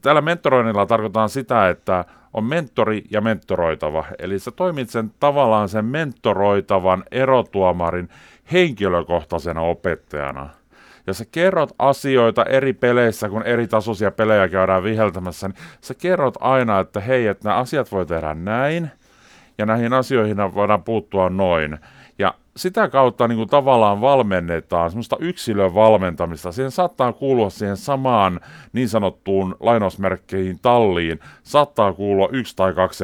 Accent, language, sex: native, Finnish, male